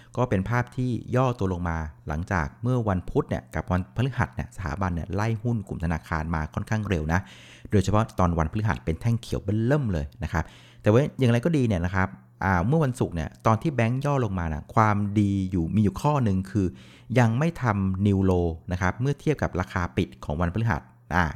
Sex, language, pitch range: male, Thai, 90-125 Hz